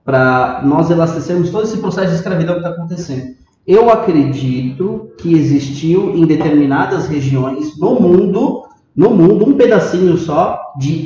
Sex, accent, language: male, Brazilian, Portuguese